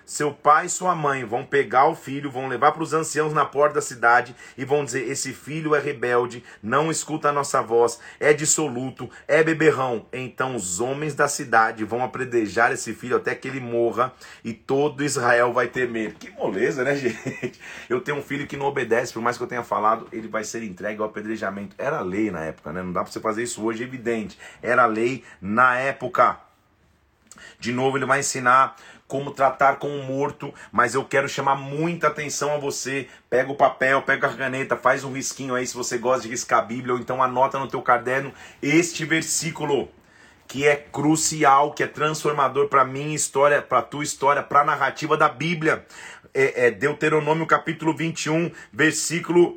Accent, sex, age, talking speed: Brazilian, male, 40-59, 195 wpm